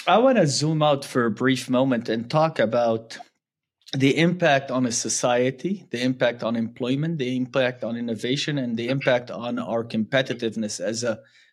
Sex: male